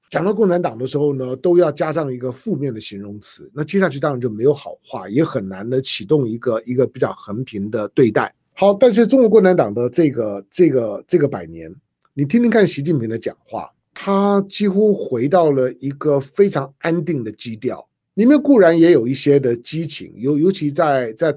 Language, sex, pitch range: Chinese, male, 125-185 Hz